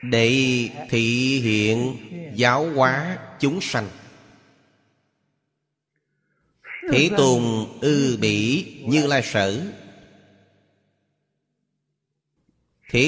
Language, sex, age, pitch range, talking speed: Vietnamese, male, 30-49, 110-140 Hz, 70 wpm